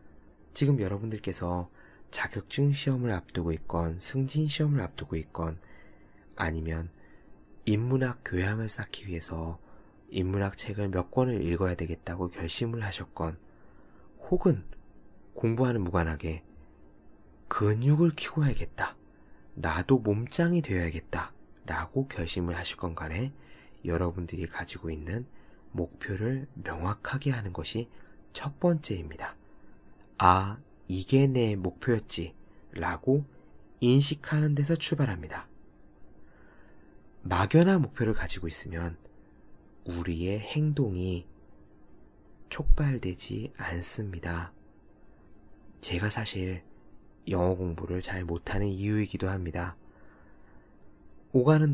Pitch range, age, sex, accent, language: 85-115 Hz, 20-39, male, native, Korean